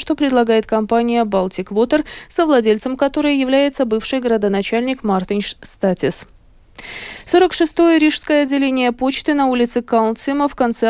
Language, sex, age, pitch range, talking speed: Russian, female, 20-39, 215-285 Hz, 115 wpm